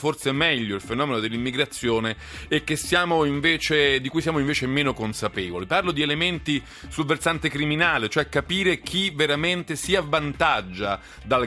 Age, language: 40-59, Italian